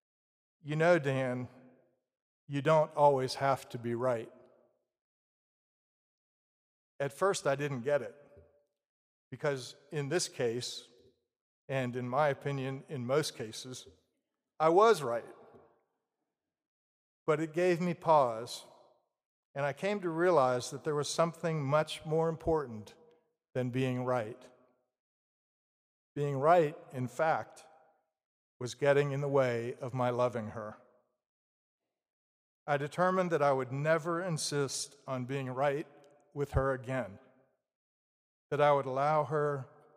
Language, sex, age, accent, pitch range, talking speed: English, male, 50-69, American, 125-155 Hz, 120 wpm